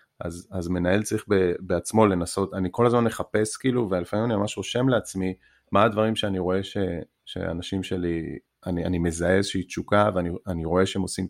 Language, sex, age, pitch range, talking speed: Hebrew, male, 30-49, 90-110 Hz, 175 wpm